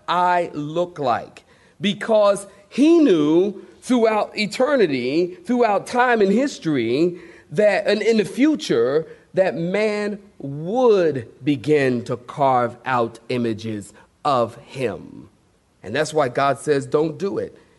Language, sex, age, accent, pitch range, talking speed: English, male, 40-59, American, 145-195 Hz, 120 wpm